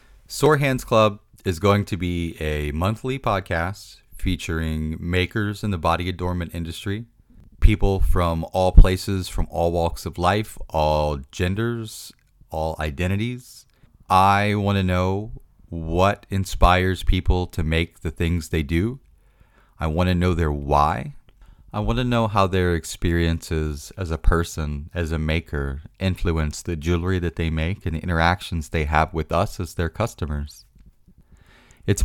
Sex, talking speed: male, 150 wpm